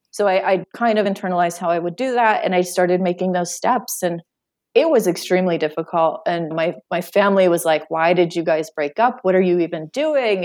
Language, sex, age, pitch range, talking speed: English, female, 30-49, 170-230 Hz, 225 wpm